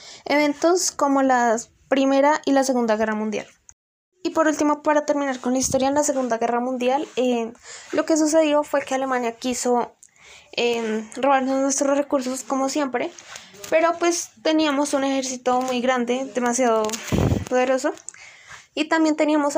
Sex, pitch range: female, 250-290 Hz